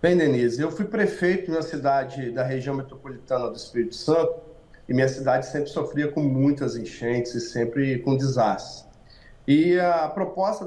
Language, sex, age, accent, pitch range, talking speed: English, male, 40-59, Brazilian, 145-210 Hz, 155 wpm